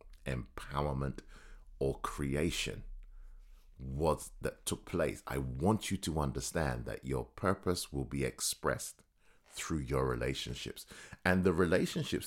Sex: male